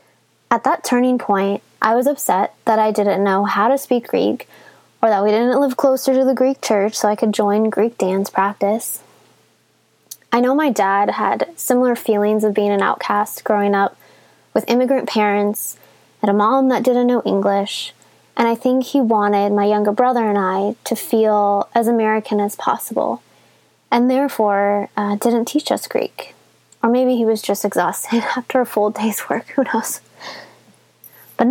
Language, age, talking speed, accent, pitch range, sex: English, 20-39, 175 wpm, American, 205-250 Hz, female